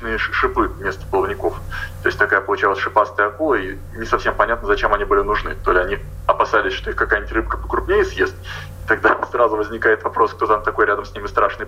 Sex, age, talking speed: male, 20-39, 195 wpm